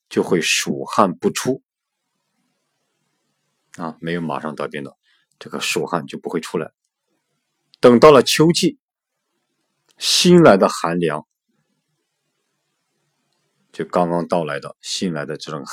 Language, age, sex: Chinese, 50-69, male